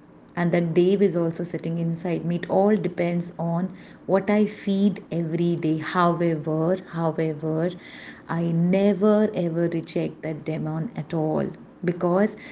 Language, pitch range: Hindi, 170-210 Hz